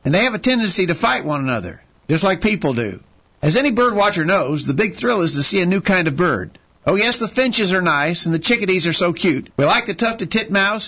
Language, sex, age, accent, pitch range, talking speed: English, male, 50-69, American, 155-220 Hz, 260 wpm